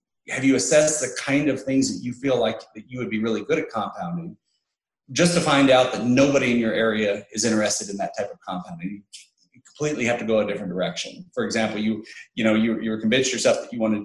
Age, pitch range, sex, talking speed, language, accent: 30-49, 110-140 Hz, male, 240 wpm, English, American